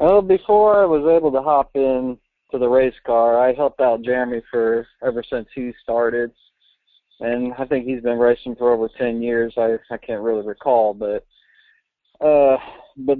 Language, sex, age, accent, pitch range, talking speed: English, male, 40-59, American, 115-140 Hz, 180 wpm